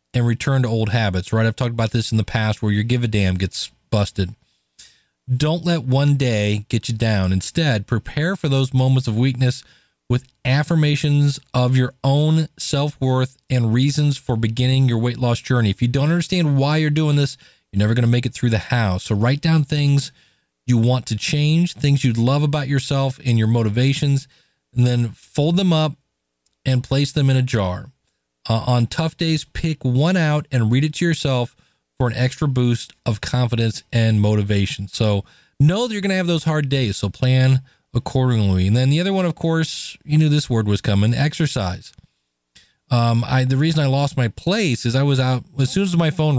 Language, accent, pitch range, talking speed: English, American, 110-145 Hz, 200 wpm